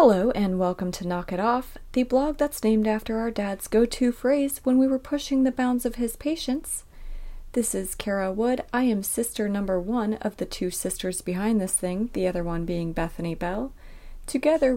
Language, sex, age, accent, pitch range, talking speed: English, female, 30-49, American, 185-250 Hz, 195 wpm